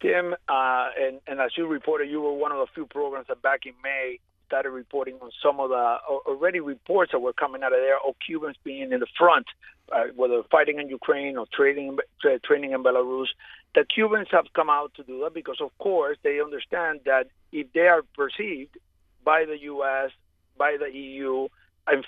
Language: English